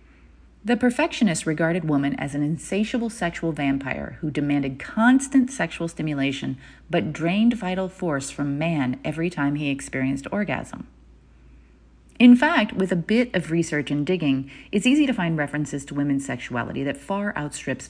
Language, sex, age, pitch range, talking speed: English, female, 30-49, 140-220 Hz, 150 wpm